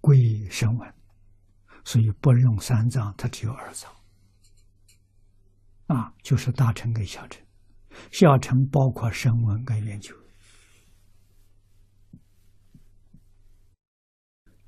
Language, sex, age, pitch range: Chinese, male, 60-79, 100-125 Hz